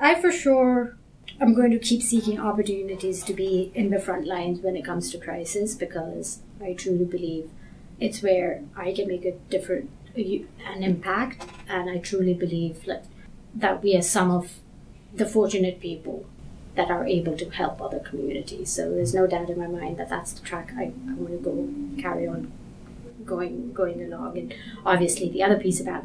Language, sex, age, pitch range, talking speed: English, female, 30-49, 175-200 Hz, 175 wpm